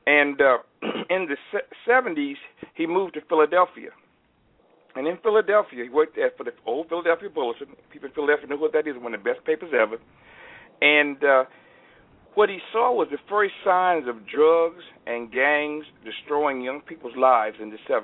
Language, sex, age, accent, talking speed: English, male, 60-79, American, 175 wpm